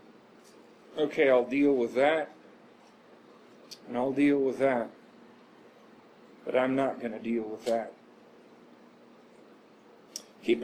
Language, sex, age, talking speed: English, male, 40-59, 105 wpm